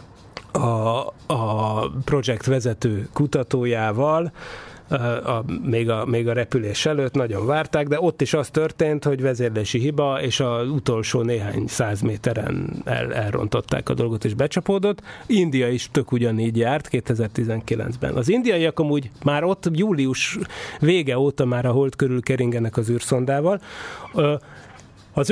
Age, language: 30-49, Hungarian